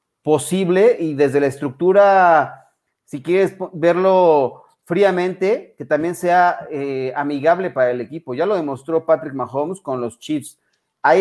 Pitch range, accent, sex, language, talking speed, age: 145-180 Hz, Mexican, male, Spanish, 140 wpm, 40-59